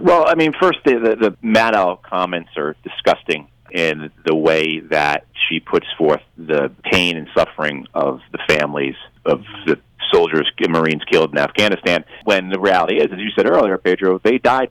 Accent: American